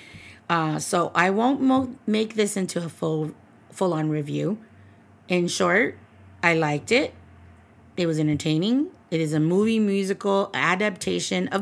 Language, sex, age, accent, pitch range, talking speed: English, female, 30-49, American, 145-180 Hz, 140 wpm